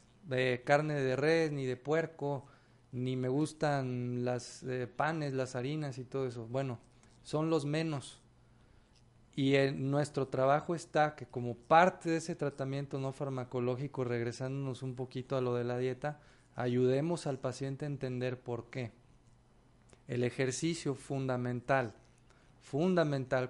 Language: Spanish